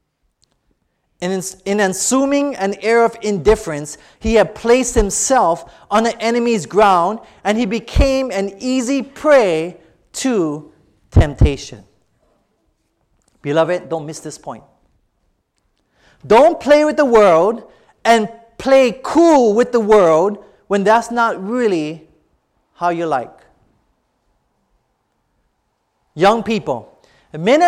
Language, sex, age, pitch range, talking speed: English, male, 30-49, 200-275 Hz, 105 wpm